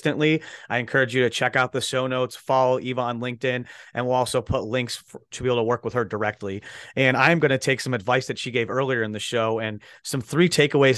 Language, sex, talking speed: English, male, 245 wpm